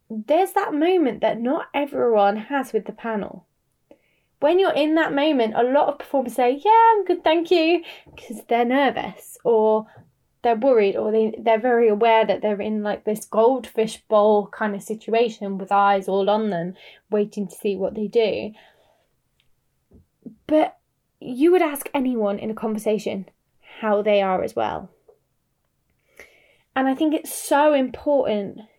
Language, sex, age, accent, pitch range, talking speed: English, female, 10-29, British, 210-265 Hz, 155 wpm